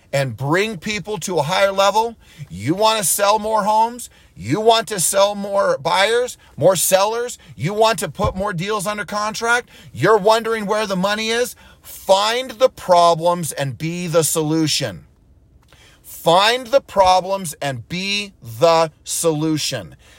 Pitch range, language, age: 125-205 Hz, English, 40-59